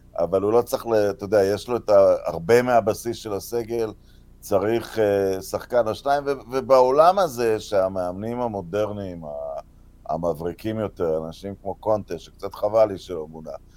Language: Hebrew